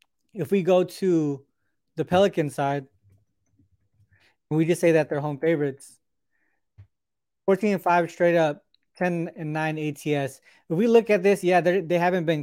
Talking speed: 155 wpm